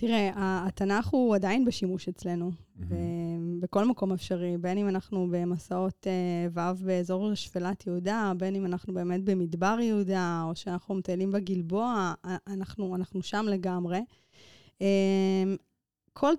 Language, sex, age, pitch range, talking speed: Hebrew, female, 20-39, 180-220 Hz, 115 wpm